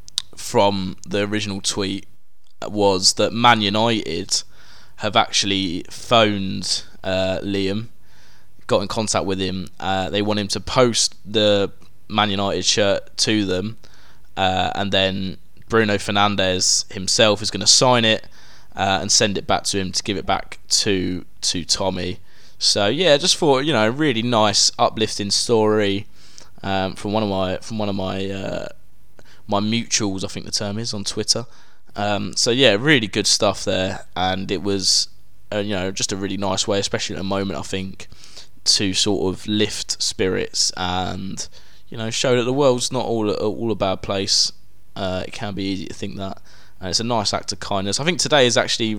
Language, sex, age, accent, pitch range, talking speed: English, male, 20-39, British, 95-110 Hz, 180 wpm